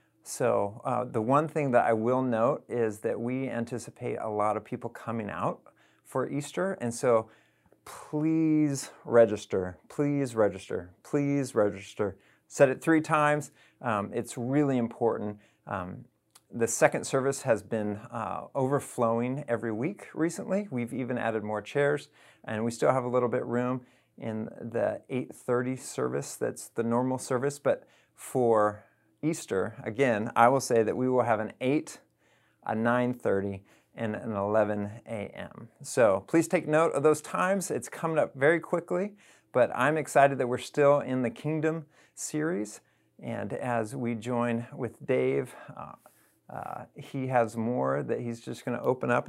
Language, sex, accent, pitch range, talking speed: English, male, American, 110-140 Hz, 155 wpm